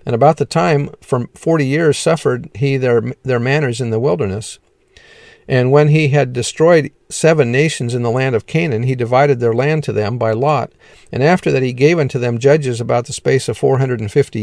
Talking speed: 200 wpm